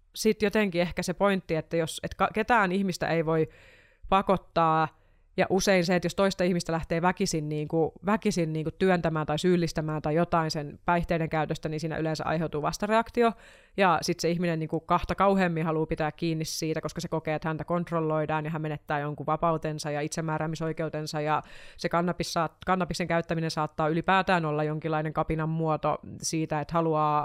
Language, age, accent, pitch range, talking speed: Finnish, 30-49, native, 155-175 Hz, 170 wpm